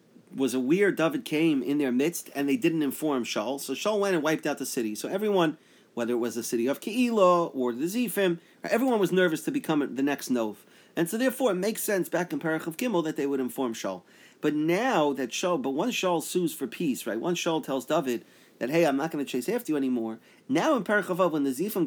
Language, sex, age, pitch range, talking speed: English, male, 40-59, 130-190 Hz, 240 wpm